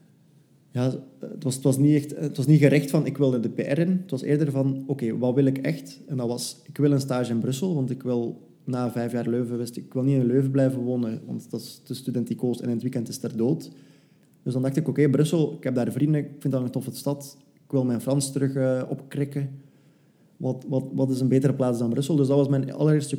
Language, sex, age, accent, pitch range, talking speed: Dutch, male, 20-39, Dutch, 125-140 Hz, 260 wpm